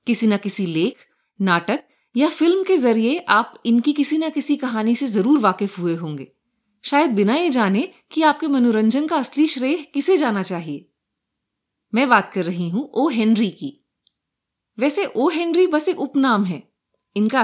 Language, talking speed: Hindi, 170 wpm